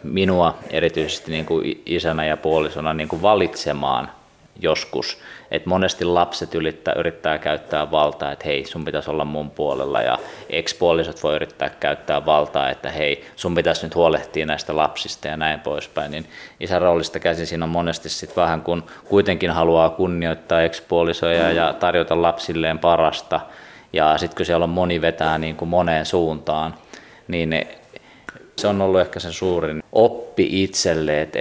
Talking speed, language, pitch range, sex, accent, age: 155 wpm, Finnish, 80-90 Hz, male, native, 20-39